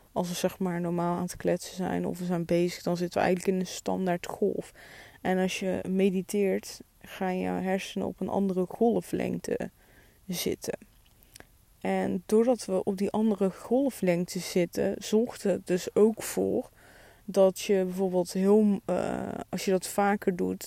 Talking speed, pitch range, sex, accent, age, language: 165 wpm, 175-205 Hz, female, Dutch, 20-39, Dutch